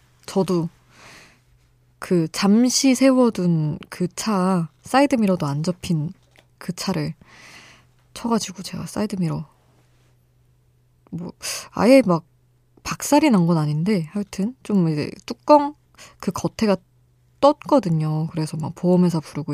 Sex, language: female, Korean